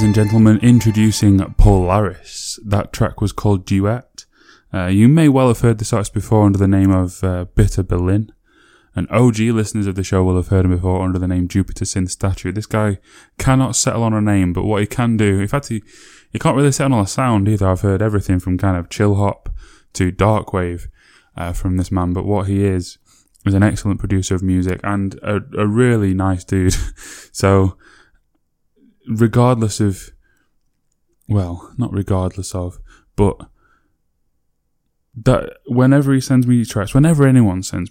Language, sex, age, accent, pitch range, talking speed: English, male, 10-29, British, 95-110 Hz, 180 wpm